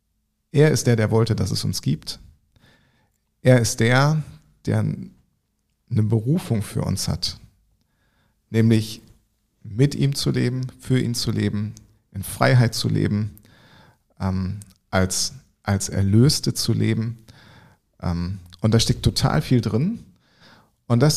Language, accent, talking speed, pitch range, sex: German, German, 120 wpm, 105-125 Hz, male